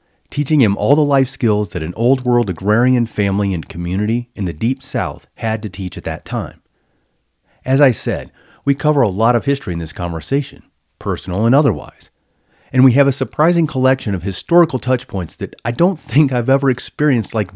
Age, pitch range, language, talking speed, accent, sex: 40-59, 95-135 Hz, English, 190 wpm, American, male